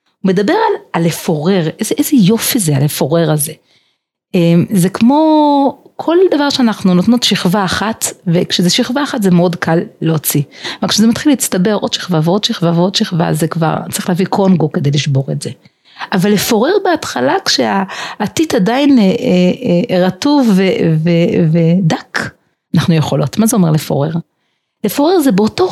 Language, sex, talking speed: Hebrew, female, 145 wpm